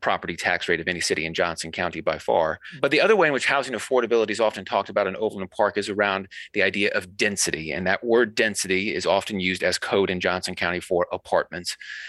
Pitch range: 95-120 Hz